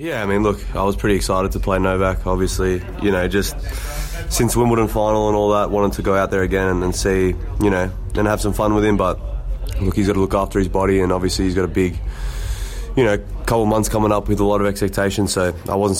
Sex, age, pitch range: male, 20-39, 90-100 Hz